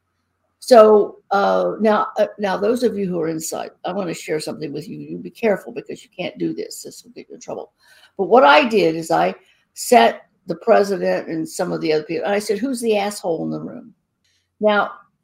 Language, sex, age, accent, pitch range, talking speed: English, female, 60-79, American, 165-230 Hz, 225 wpm